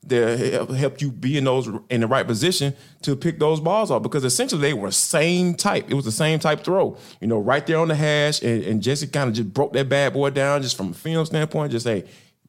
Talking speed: 255 wpm